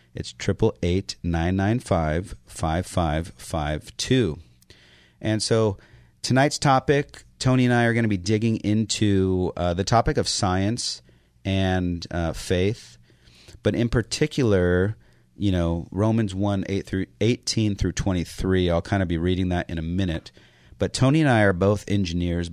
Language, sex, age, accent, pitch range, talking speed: English, male, 40-59, American, 85-100 Hz, 160 wpm